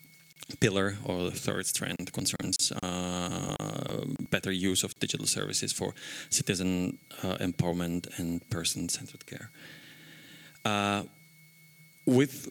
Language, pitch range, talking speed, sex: English, 90-130 Hz, 100 wpm, male